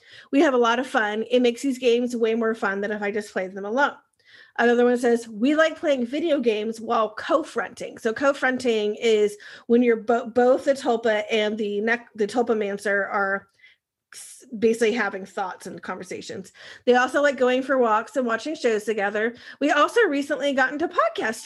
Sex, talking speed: female, 185 wpm